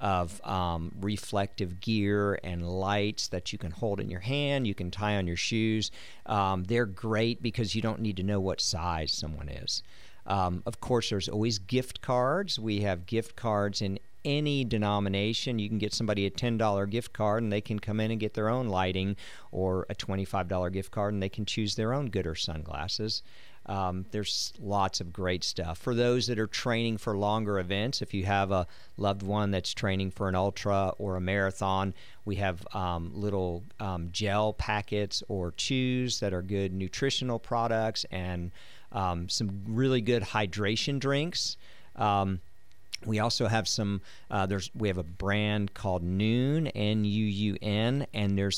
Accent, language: American, English